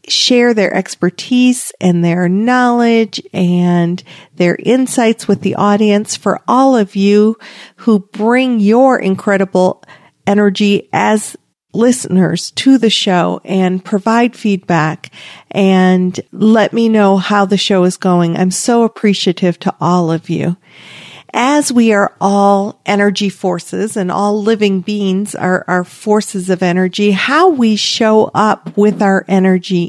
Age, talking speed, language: 50-69, 135 wpm, English